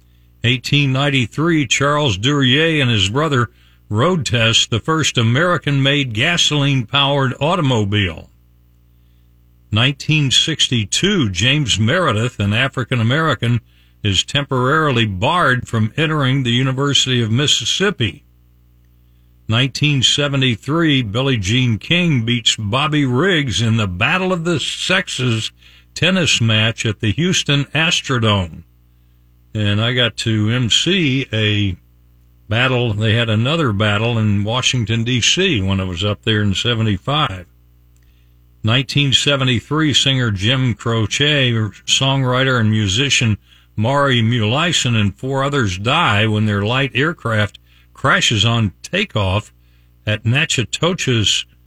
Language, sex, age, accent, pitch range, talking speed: English, male, 60-79, American, 100-140 Hz, 105 wpm